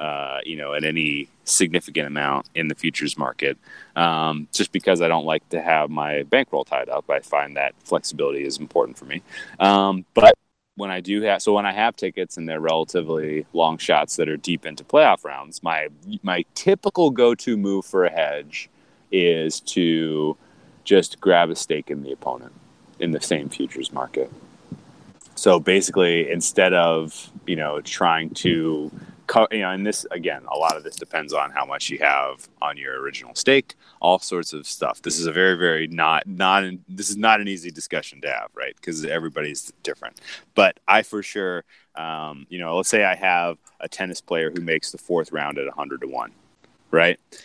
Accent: American